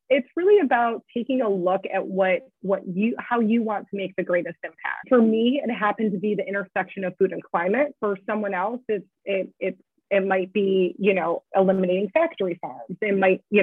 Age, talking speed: 30-49, 205 wpm